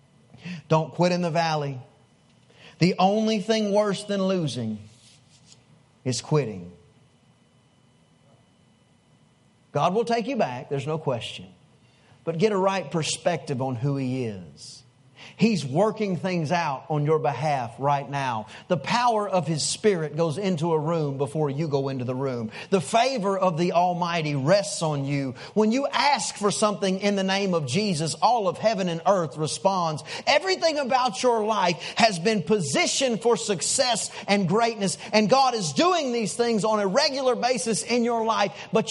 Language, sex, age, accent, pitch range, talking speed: English, male, 40-59, American, 155-205 Hz, 160 wpm